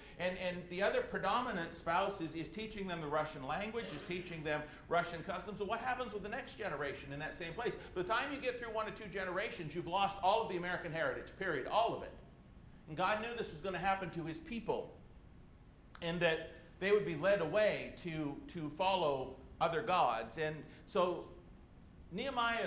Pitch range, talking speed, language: 150-195 Hz, 200 wpm, English